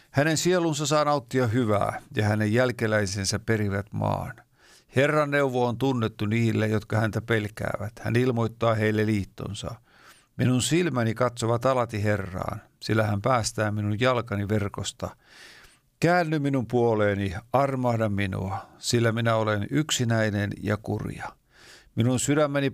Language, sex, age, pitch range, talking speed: Finnish, male, 50-69, 105-130 Hz, 120 wpm